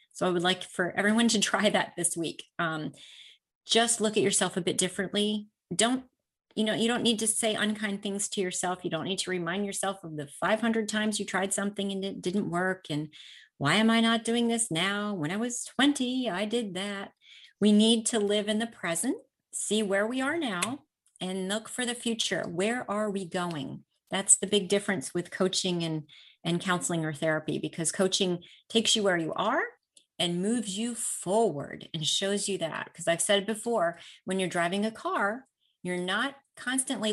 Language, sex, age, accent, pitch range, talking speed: English, female, 30-49, American, 180-225 Hz, 195 wpm